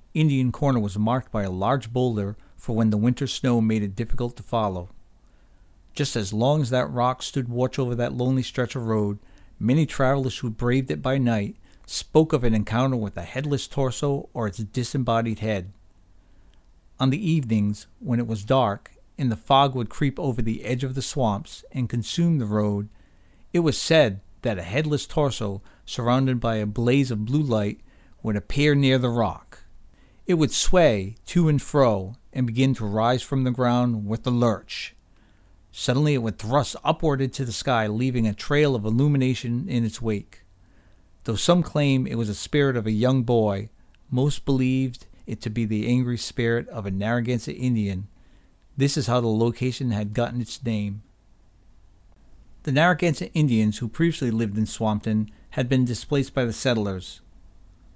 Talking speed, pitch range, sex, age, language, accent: 175 wpm, 105-130 Hz, male, 50-69, English, American